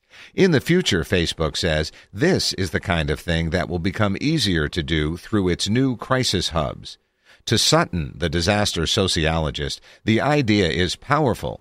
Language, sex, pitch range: English, male, 80-110 Hz